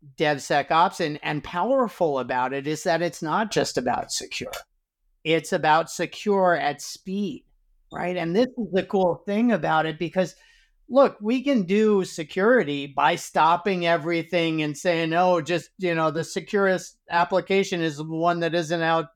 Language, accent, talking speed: English, American, 160 wpm